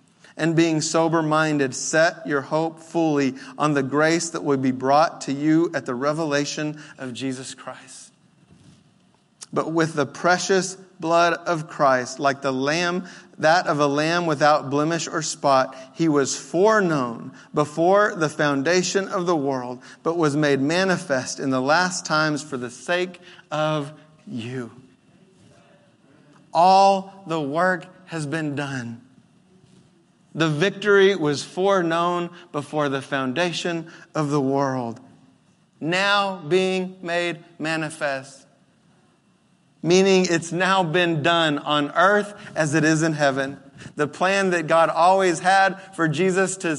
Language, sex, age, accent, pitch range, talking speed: English, male, 40-59, American, 150-185 Hz, 135 wpm